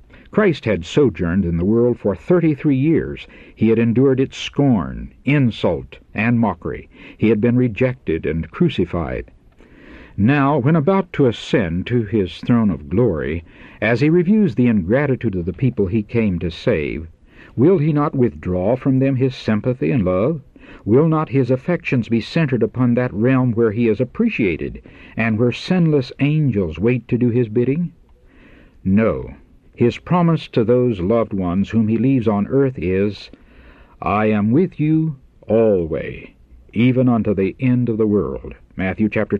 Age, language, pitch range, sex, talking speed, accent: 60-79, English, 100-135 Hz, male, 160 wpm, American